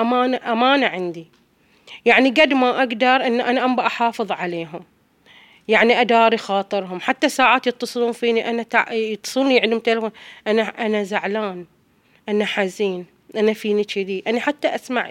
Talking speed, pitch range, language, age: 135 wpm, 200-245 Hz, Arabic, 30-49